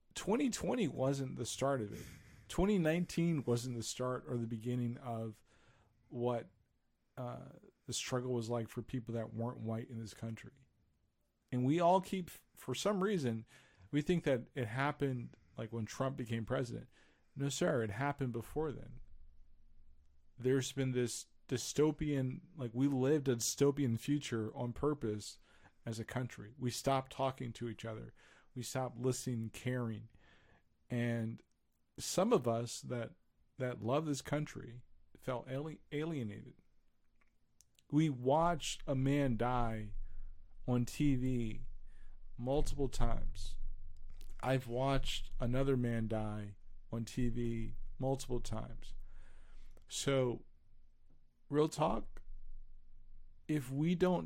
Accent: American